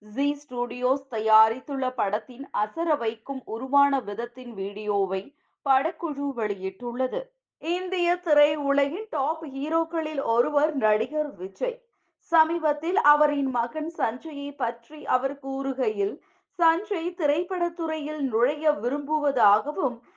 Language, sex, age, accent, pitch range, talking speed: Tamil, female, 30-49, native, 230-305 Hz, 85 wpm